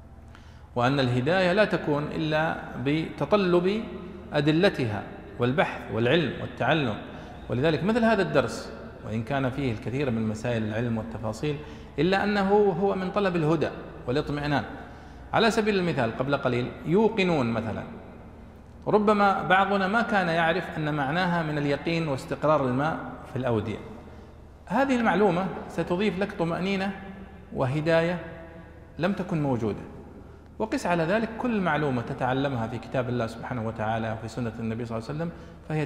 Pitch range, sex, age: 120-180 Hz, male, 40-59